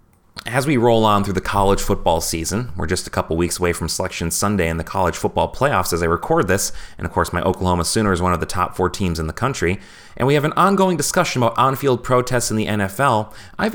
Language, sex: English, male